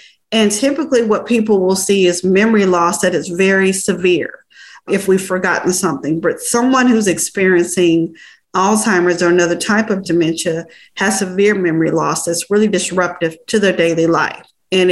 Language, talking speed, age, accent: English, 155 wpm, 40-59, American